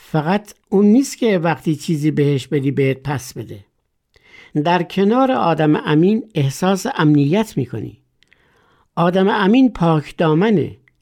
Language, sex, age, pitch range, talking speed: Persian, male, 60-79, 145-195 Hz, 125 wpm